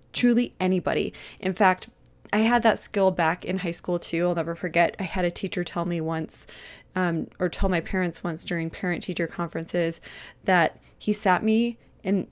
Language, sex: English, female